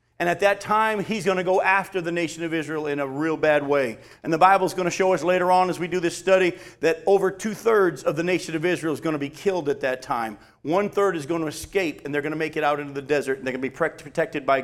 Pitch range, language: 145-185 Hz, English